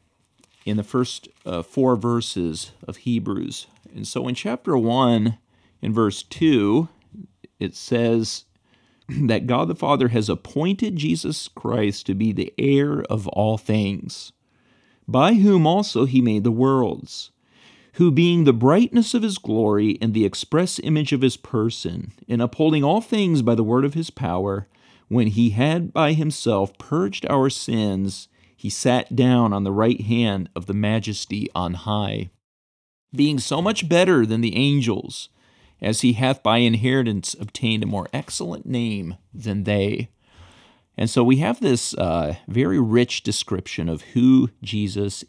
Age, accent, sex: 40-59, American, male